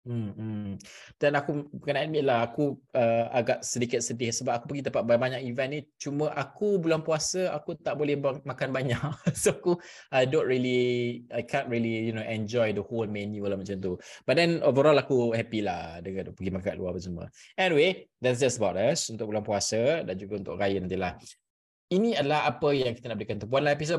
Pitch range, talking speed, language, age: 110-140 Hz, 200 wpm, Malay, 20-39